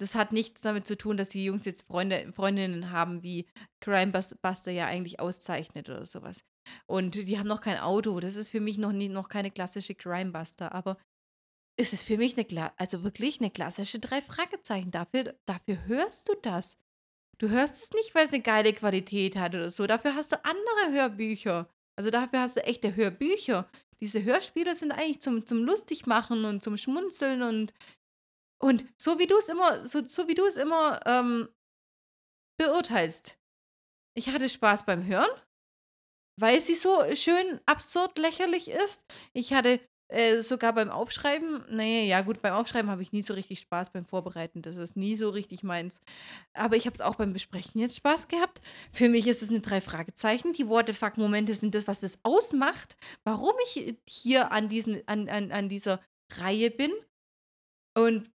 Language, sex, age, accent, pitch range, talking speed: German, female, 30-49, German, 195-265 Hz, 185 wpm